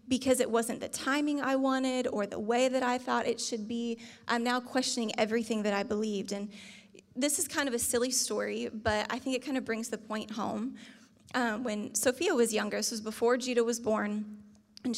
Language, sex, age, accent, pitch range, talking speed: English, female, 20-39, American, 220-265 Hz, 210 wpm